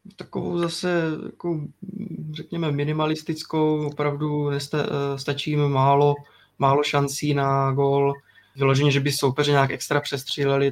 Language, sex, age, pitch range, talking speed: Czech, male, 20-39, 135-145 Hz, 120 wpm